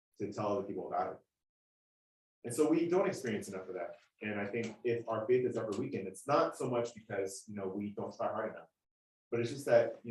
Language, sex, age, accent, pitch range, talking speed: English, male, 30-49, American, 100-125 Hz, 235 wpm